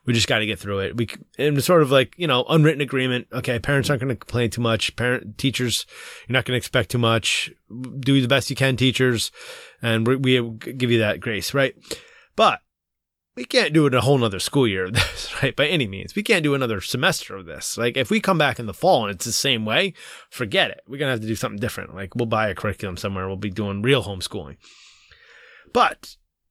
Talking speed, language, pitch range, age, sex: 240 wpm, English, 110-140 Hz, 20-39, male